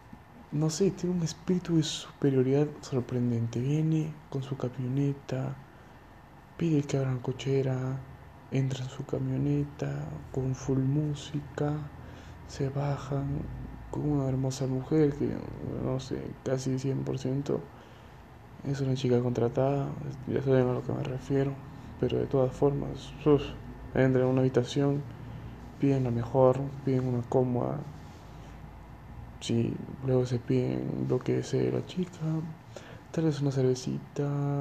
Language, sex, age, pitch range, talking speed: Spanish, male, 20-39, 130-145 Hz, 130 wpm